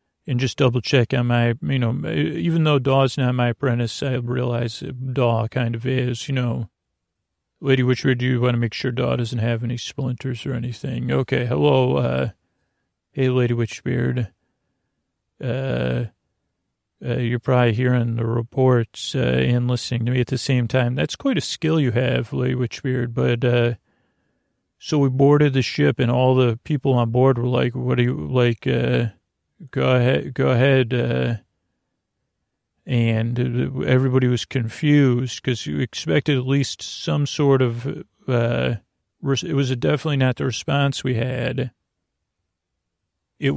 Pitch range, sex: 120-130 Hz, male